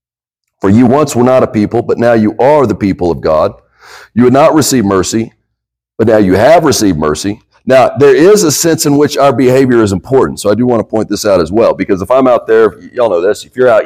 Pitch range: 105-140 Hz